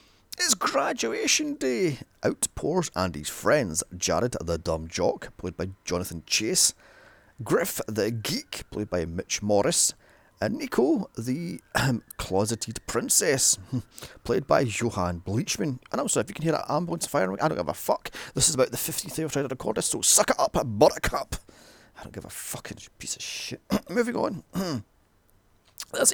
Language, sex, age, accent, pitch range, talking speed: English, male, 30-49, British, 95-130 Hz, 165 wpm